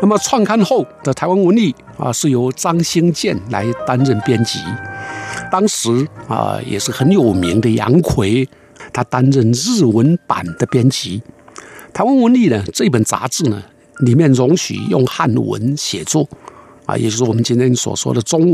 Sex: male